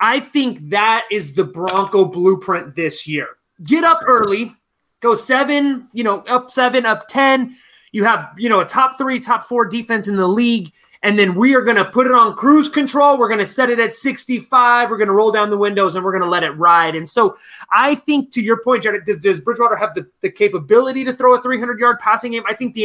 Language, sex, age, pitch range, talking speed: English, male, 20-39, 195-250 Hz, 235 wpm